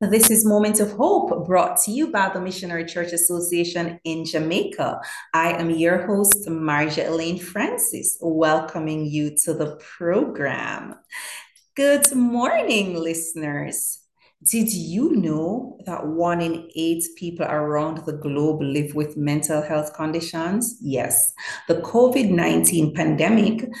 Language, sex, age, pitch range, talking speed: English, female, 30-49, 145-180 Hz, 125 wpm